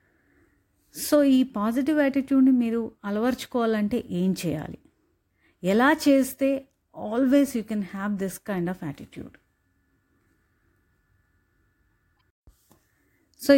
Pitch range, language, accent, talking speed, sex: 195-265 Hz, Telugu, native, 85 wpm, female